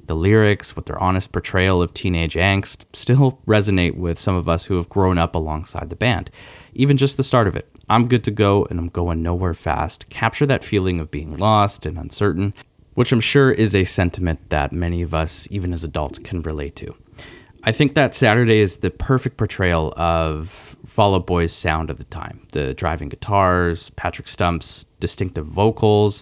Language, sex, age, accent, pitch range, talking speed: English, male, 30-49, American, 85-105 Hz, 190 wpm